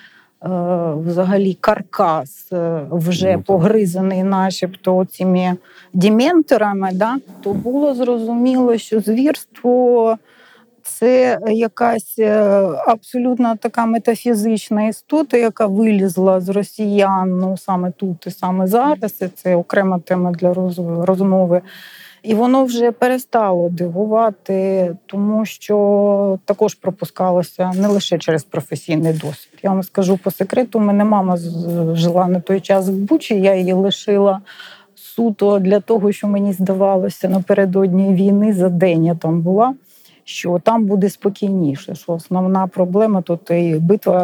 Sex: female